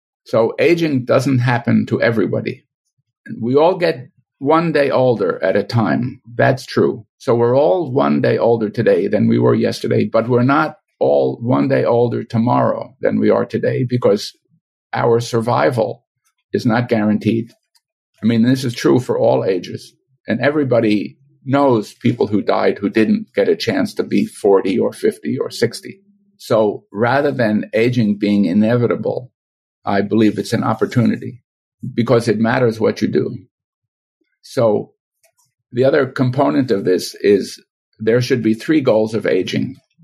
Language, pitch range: English, 115-160 Hz